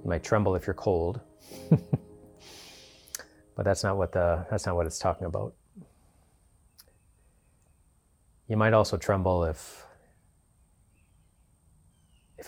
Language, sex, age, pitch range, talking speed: English, male, 30-49, 85-110 Hz, 110 wpm